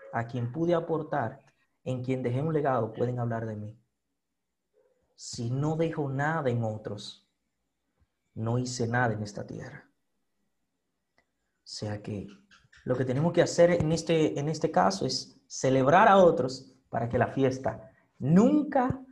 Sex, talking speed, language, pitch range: male, 150 wpm, Spanish, 115-155 Hz